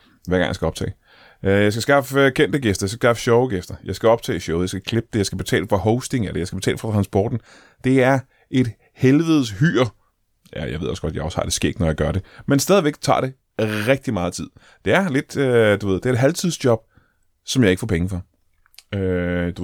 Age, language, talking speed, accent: 30-49, Danish, 230 wpm, native